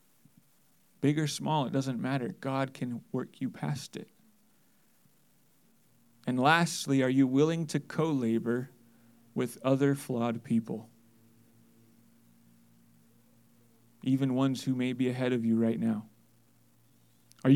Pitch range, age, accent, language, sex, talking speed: 120-150 Hz, 30-49, American, English, male, 115 wpm